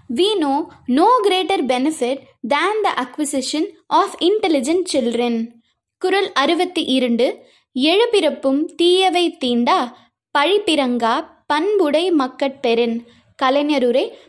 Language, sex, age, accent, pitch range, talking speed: Tamil, female, 20-39, native, 255-345 Hz, 90 wpm